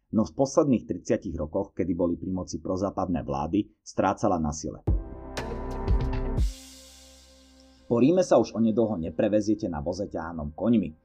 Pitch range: 80-115 Hz